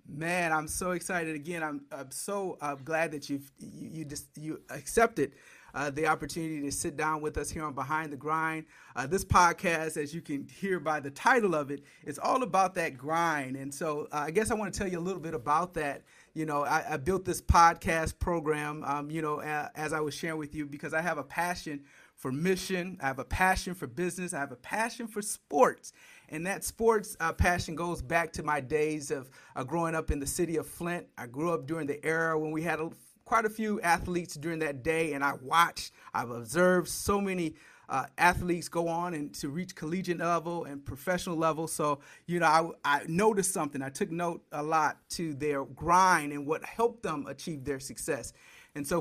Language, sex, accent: English, male, American